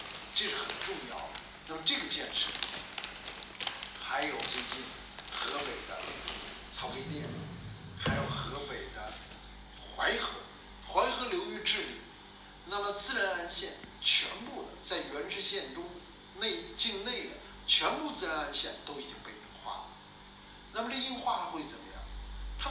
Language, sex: Chinese, male